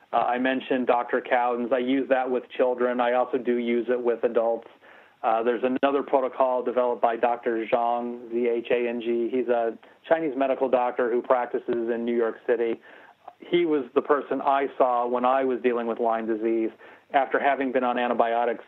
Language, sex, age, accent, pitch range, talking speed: English, male, 40-59, American, 115-130 Hz, 175 wpm